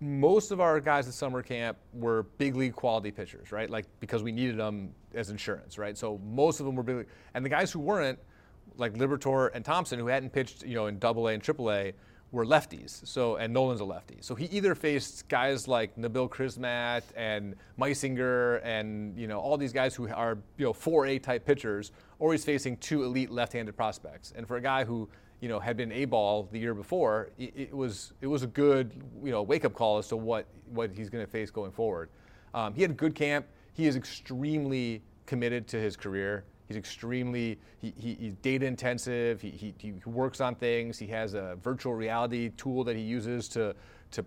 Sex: male